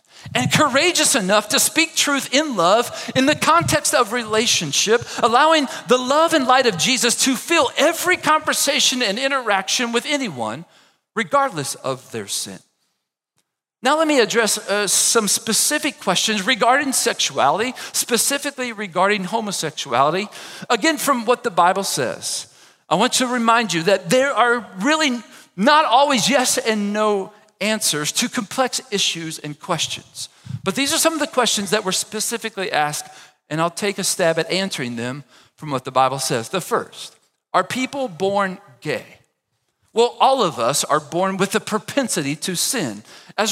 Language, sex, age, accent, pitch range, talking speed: English, male, 40-59, American, 190-270 Hz, 155 wpm